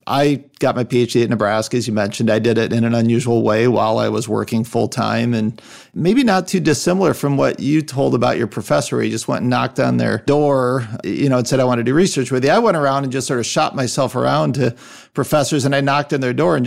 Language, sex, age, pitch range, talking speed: English, male, 40-59, 120-150 Hz, 265 wpm